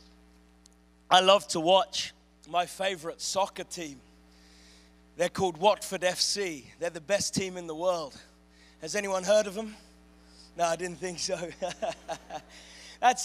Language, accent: English, British